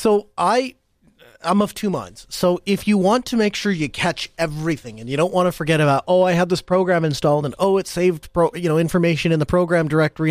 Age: 30-49